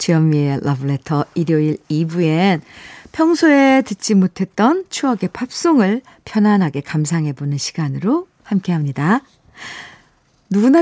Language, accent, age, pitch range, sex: Korean, native, 50-69, 160-250 Hz, female